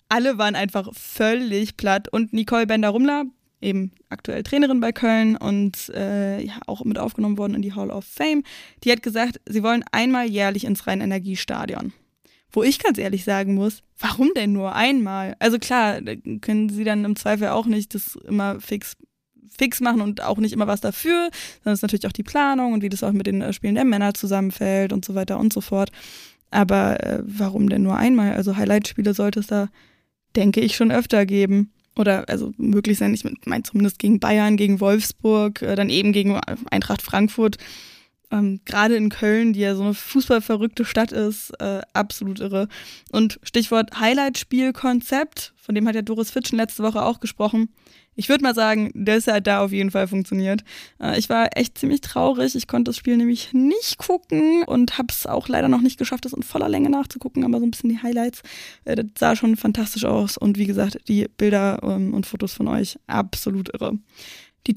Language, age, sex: German, 20-39, female